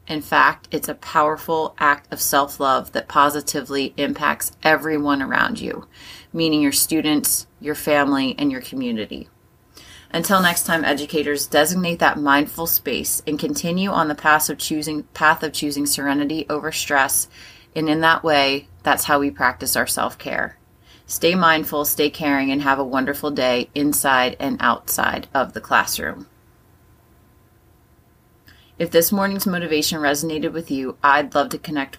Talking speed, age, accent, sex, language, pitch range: 145 wpm, 30-49, American, female, English, 135-160 Hz